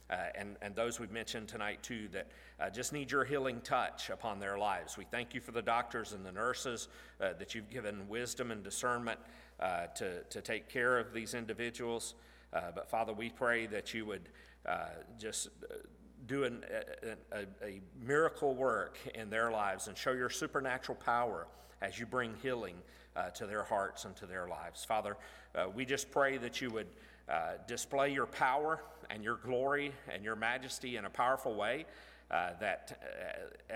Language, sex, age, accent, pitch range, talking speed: English, male, 50-69, American, 110-130 Hz, 180 wpm